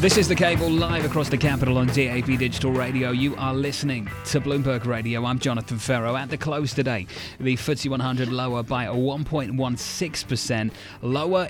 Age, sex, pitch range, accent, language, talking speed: 30-49, male, 115-140 Hz, British, English, 165 wpm